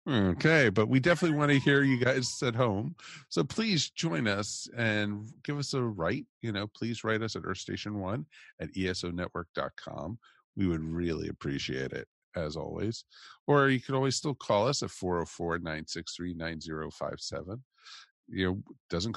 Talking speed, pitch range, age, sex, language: 165 wpm, 90-120 Hz, 50-69, male, English